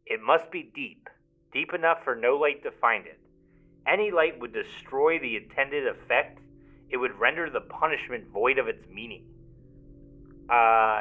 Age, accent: 30-49, American